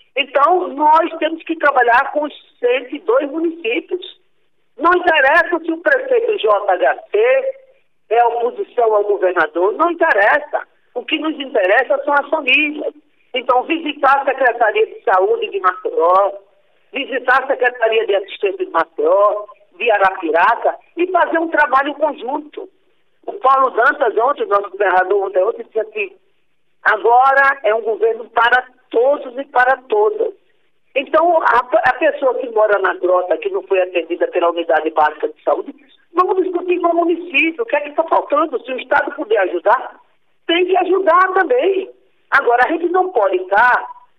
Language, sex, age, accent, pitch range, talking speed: Portuguese, male, 50-69, Brazilian, 235-395 Hz, 150 wpm